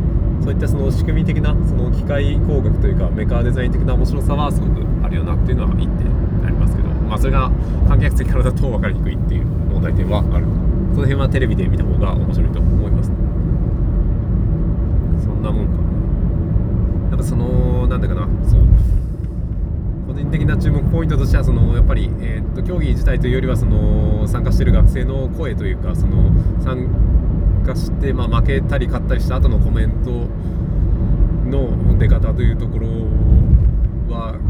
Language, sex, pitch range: Japanese, male, 85-100 Hz